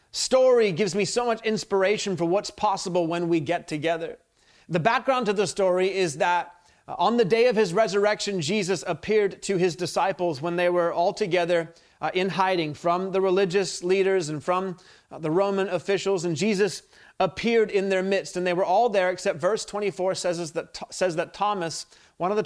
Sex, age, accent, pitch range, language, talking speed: male, 30-49, American, 170-200 Hz, English, 180 wpm